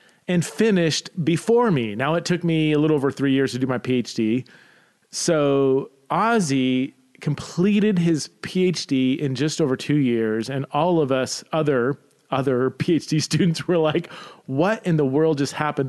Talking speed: 160 wpm